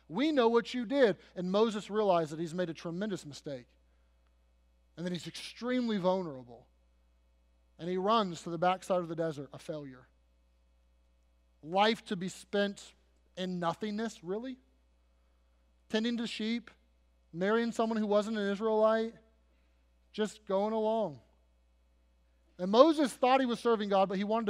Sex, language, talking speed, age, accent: male, English, 145 wpm, 30-49, American